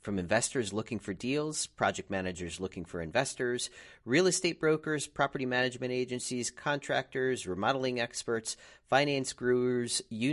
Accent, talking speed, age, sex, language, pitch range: American, 130 wpm, 40-59, male, English, 95-135 Hz